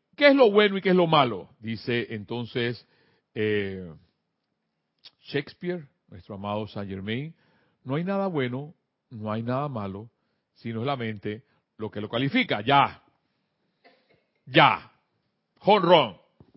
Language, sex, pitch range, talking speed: Spanish, male, 120-200 Hz, 130 wpm